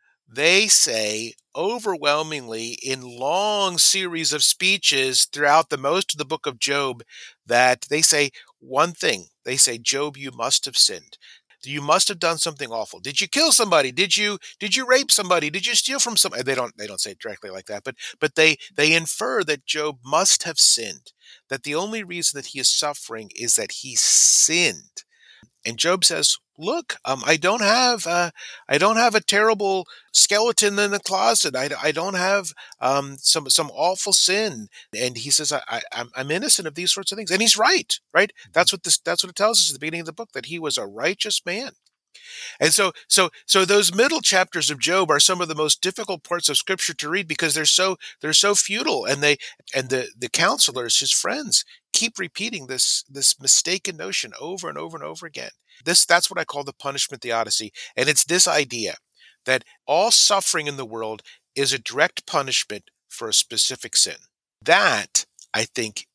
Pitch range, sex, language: 135-195 Hz, male, English